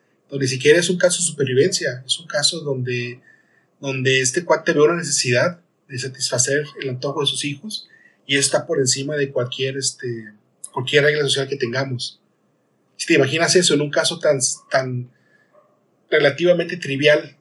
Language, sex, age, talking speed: Spanish, male, 30-49, 170 wpm